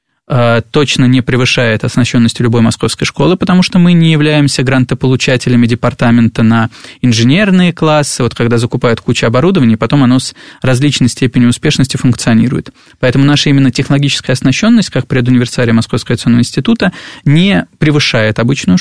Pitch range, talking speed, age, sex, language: 120-145 Hz, 135 wpm, 20-39, male, Russian